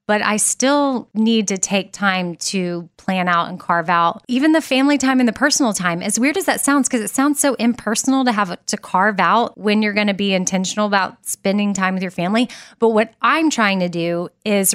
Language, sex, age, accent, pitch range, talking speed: English, female, 20-39, American, 185-230 Hz, 225 wpm